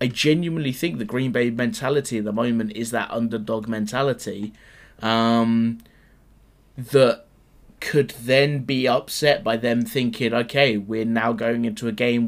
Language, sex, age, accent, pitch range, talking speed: English, male, 20-39, British, 110-125 Hz, 145 wpm